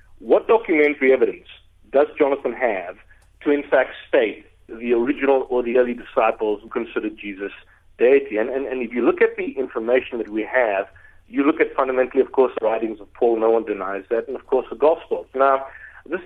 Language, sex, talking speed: English, male, 195 wpm